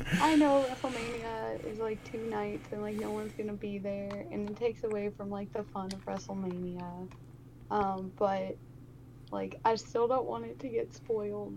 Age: 20-39